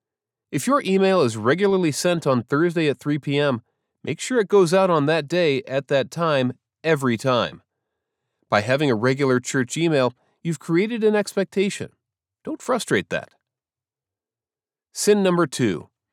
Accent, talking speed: American, 150 wpm